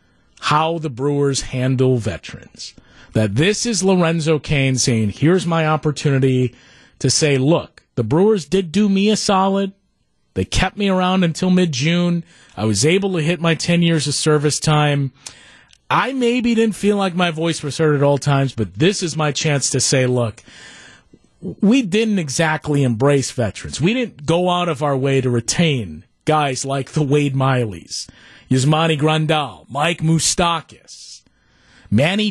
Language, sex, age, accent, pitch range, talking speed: English, male, 40-59, American, 135-175 Hz, 160 wpm